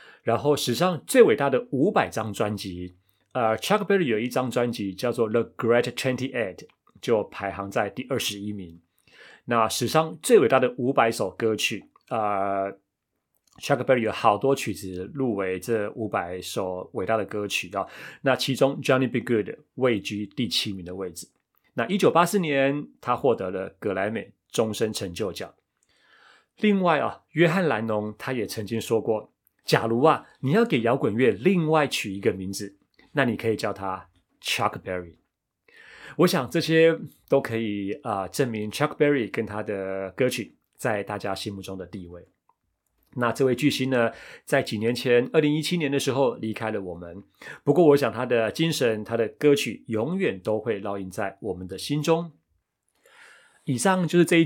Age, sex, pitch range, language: 30-49, male, 100-140 Hz, Chinese